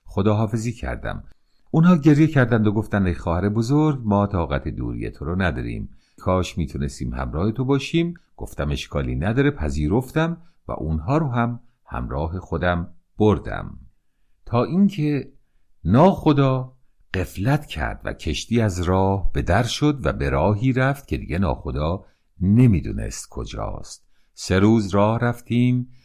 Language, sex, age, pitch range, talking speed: Persian, male, 50-69, 85-125 Hz, 130 wpm